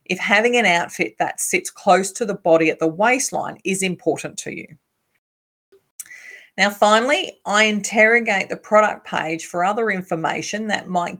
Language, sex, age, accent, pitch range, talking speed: English, female, 40-59, Australian, 170-225 Hz, 155 wpm